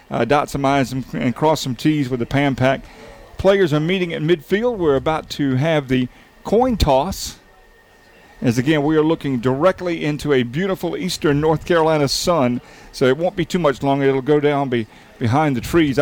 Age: 50-69